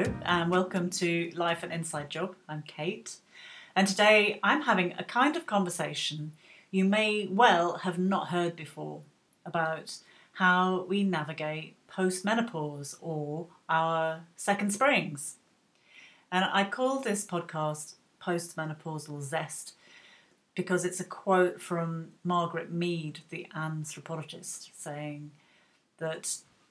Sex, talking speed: female, 115 wpm